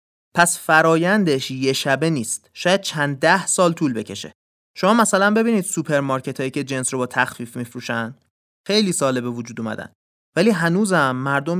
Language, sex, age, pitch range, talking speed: Persian, male, 30-49, 125-180 Hz, 160 wpm